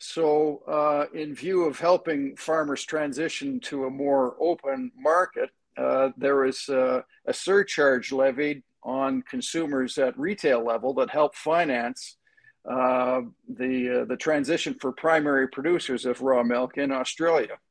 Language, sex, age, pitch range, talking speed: English, male, 50-69, 135-185 Hz, 135 wpm